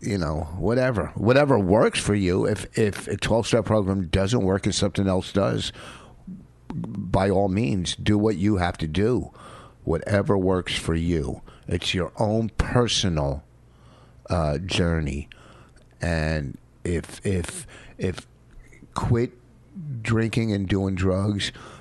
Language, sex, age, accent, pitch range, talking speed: English, male, 50-69, American, 85-105 Hz, 130 wpm